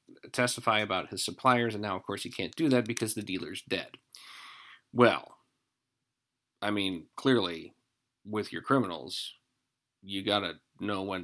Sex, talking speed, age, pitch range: male, 145 wpm, 40-59, 105-130 Hz